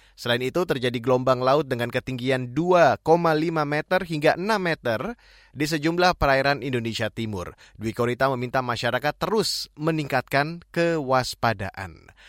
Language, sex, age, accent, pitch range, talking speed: Indonesian, male, 20-39, native, 130-170 Hz, 115 wpm